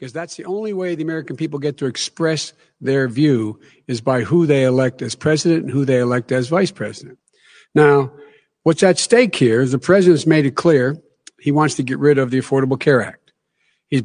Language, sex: English, male